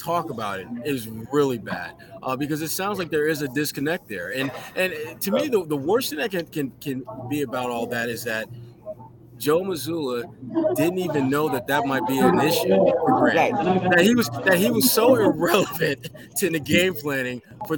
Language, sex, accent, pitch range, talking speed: English, male, American, 130-180 Hz, 200 wpm